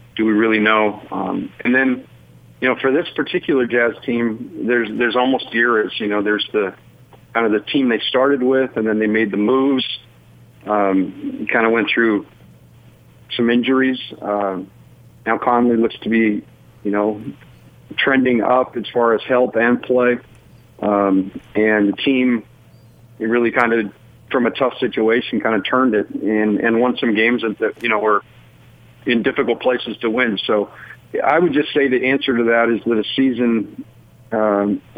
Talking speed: 175 wpm